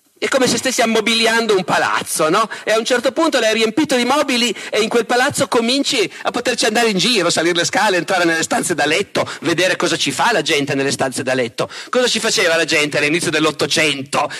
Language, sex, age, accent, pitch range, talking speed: Italian, male, 40-59, native, 175-250 Hz, 215 wpm